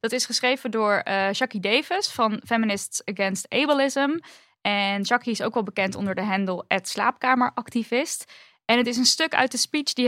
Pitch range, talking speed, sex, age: 210-255 Hz, 185 wpm, female, 10-29